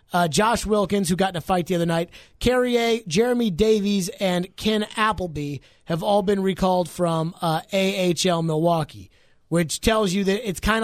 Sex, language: male, English